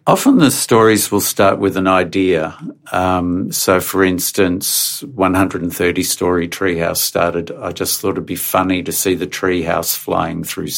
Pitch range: 85-100 Hz